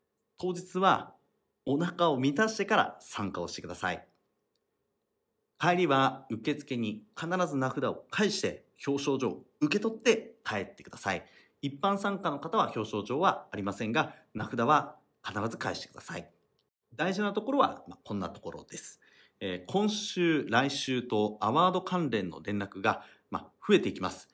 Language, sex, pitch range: Japanese, male, 105-145 Hz